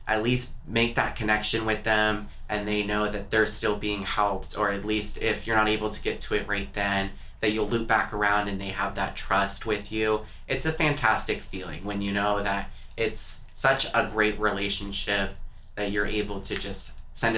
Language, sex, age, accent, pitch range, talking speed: English, male, 20-39, American, 95-105 Hz, 205 wpm